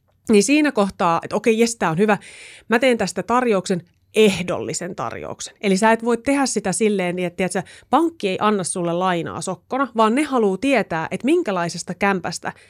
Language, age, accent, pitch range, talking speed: Finnish, 30-49, native, 180-250 Hz, 180 wpm